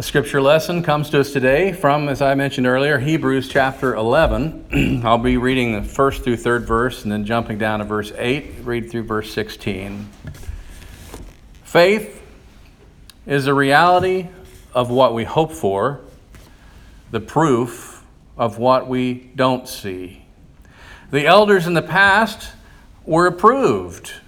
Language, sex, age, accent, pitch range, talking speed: English, male, 50-69, American, 115-170 Hz, 140 wpm